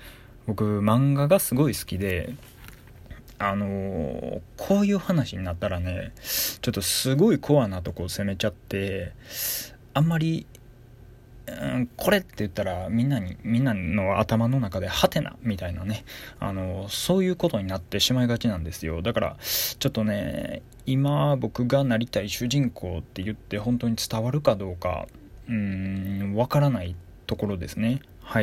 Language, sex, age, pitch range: Japanese, male, 20-39, 95-120 Hz